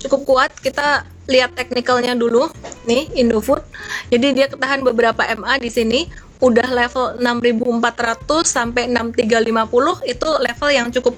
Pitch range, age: 220-260 Hz, 20-39